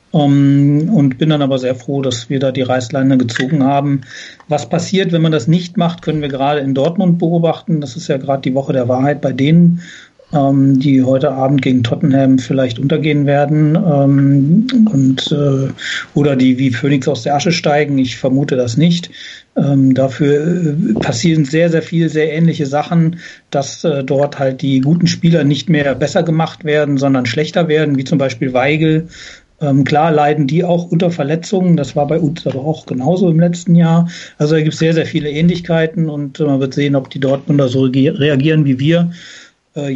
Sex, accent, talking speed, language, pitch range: male, German, 180 wpm, German, 135-165 Hz